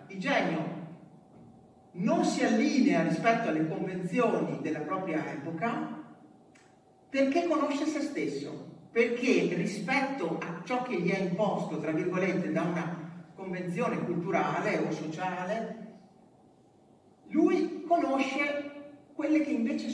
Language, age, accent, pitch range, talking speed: Italian, 50-69, native, 165-245 Hz, 110 wpm